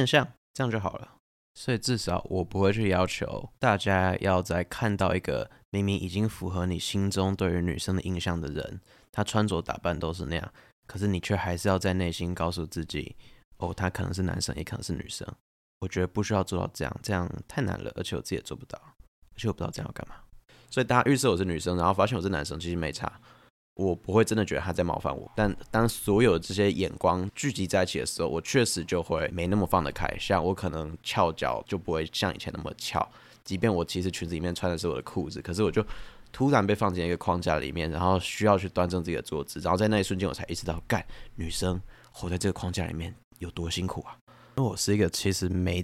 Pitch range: 85-100 Hz